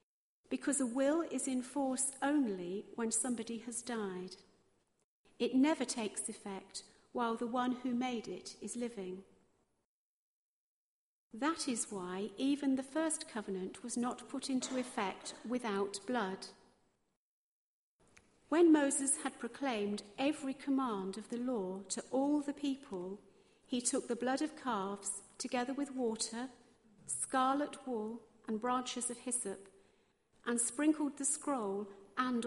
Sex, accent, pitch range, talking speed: female, British, 205-260 Hz, 130 wpm